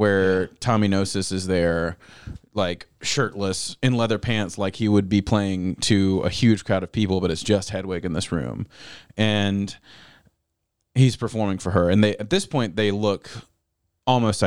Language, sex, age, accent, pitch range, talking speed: English, male, 30-49, American, 95-110 Hz, 170 wpm